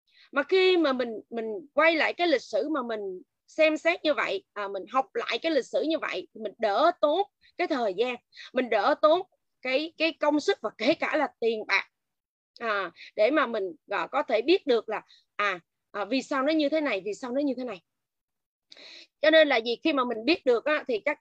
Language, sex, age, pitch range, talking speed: Vietnamese, female, 20-39, 235-320 Hz, 230 wpm